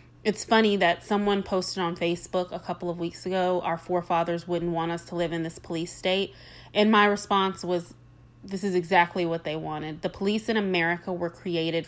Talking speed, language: 195 wpm, English